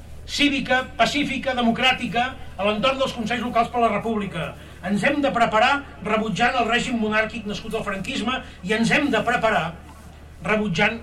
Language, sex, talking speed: French, male, 150 wpm